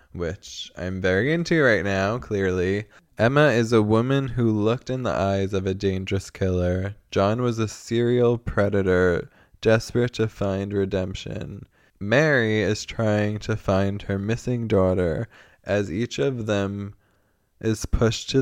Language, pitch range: English, 90-115 Hz